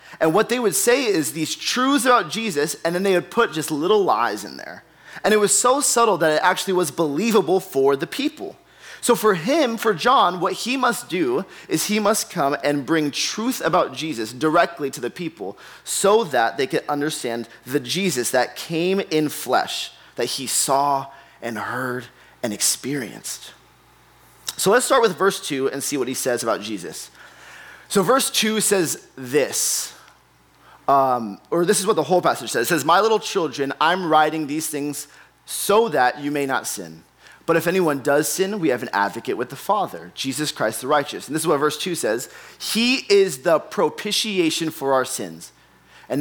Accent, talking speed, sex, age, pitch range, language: American, 190 wpm, male, 30-49, 140-215 Hz, English